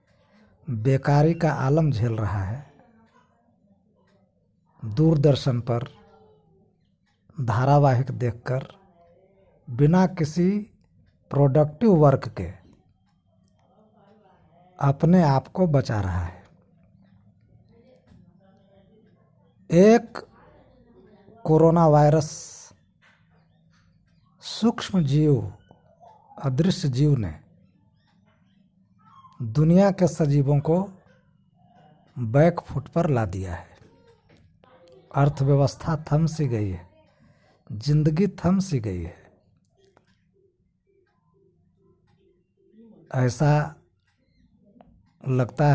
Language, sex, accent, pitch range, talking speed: Hindi, male, native, 120-170 Hz, 65 wpm